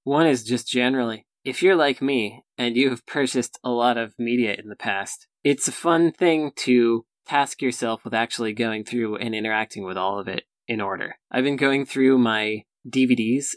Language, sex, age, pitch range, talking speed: English, male, 20-39, 110-130 Hz, 195 wpm